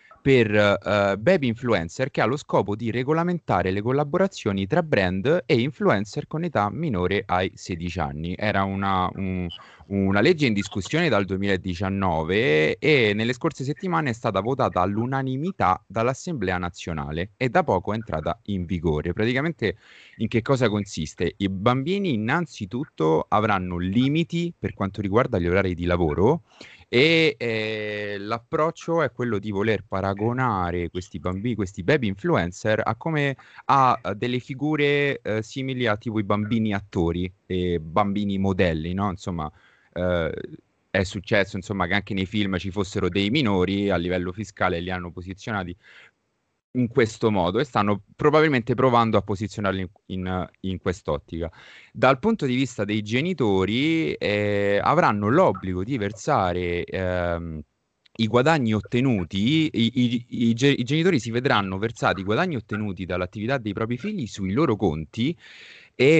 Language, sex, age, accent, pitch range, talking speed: Italian, male, 30-49, native, 95-125 Hz, 145 wpm